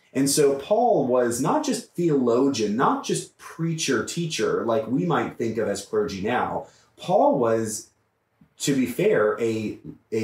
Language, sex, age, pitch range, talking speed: English, male, 30-49, 115-165 Hz, 150 wpm